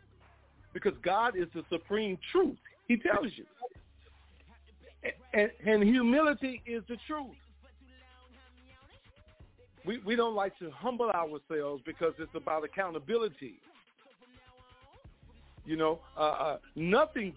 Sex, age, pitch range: male, 50-69, 130-200 Hz